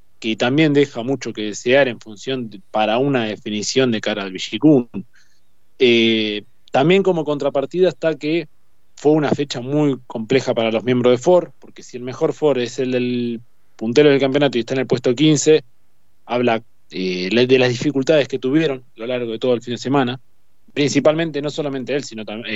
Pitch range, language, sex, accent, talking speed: 115-150 Hz, Spanish, male, Argentinian, 190 wpm